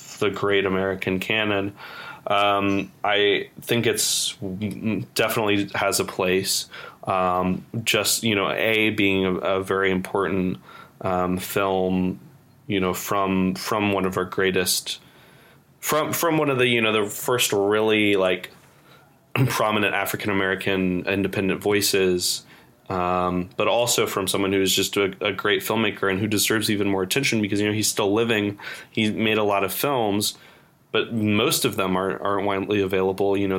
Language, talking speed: English, 155 wpm